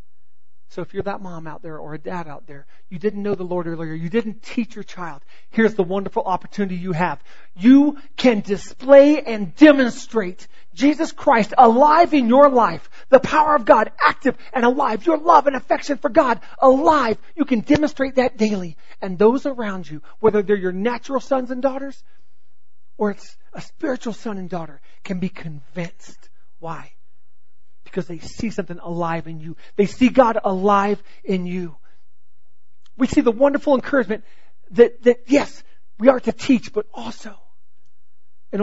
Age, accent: 40-59, American